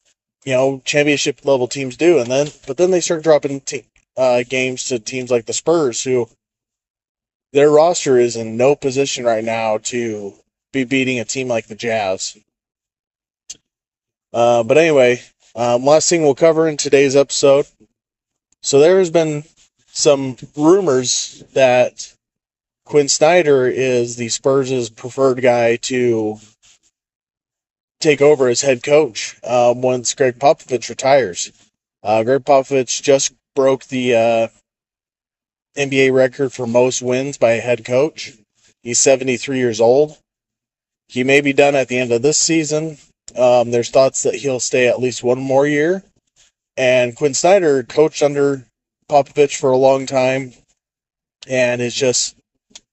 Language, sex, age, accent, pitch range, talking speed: English, male, 20-39, American, 120-140 Hz, 145 wpm